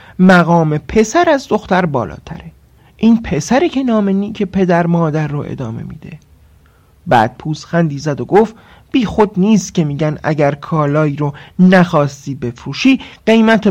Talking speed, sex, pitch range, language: 140 wpm, male, 145-210 Hz, Persian